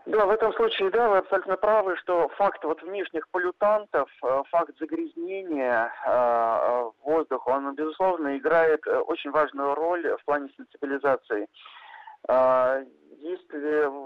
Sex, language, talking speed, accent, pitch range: male, Russian, 105 wpm, native, 140-180 Hz